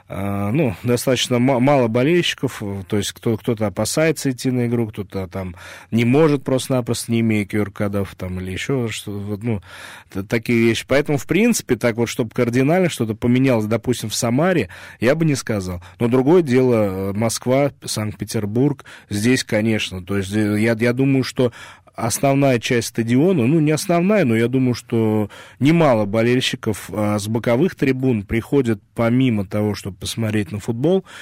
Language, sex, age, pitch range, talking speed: Russian, male, 20-39, 105-130 Hz, 155 wpm